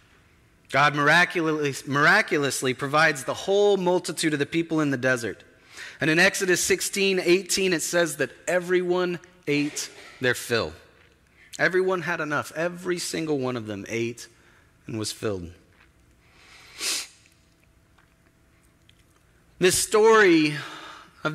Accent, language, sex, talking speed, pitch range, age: American, English, male, 110 wpm, 130-175 Hz, 30-49